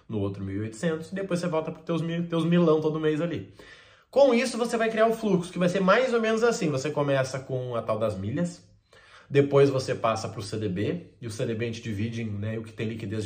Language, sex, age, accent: Portuguese, male, 20-39, Brazilian